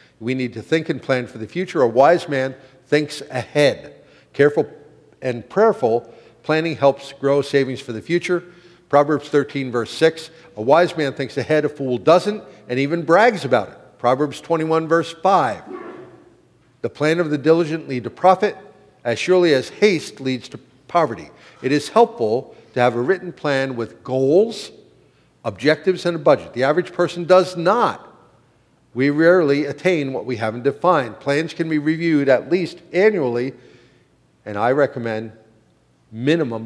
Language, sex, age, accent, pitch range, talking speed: English, male, 50-69, American, 125-165 Hz, 160 wpm